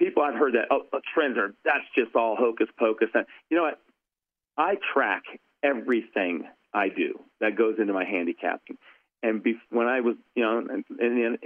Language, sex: English, male